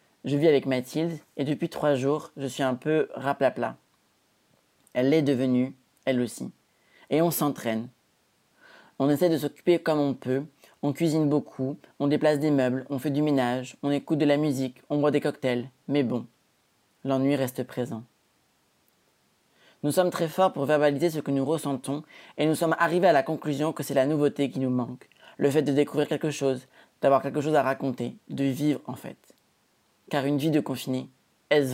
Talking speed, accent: 185 wpm, French